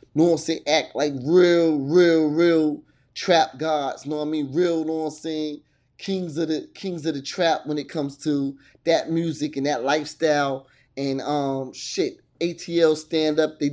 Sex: male